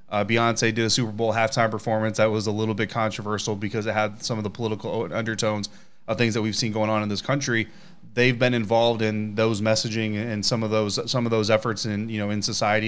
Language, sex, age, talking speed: English, male, 20-39, 240 wpm